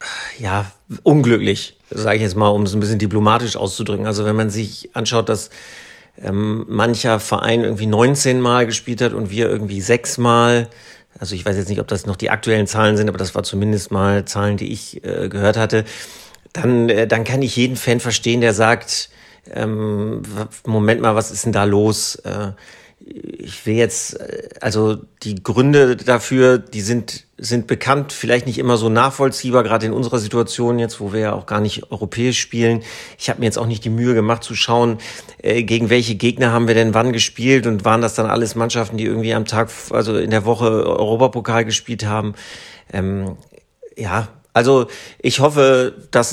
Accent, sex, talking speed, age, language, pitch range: German, male, 190 wpm, 40-59, German, 105-120 Hz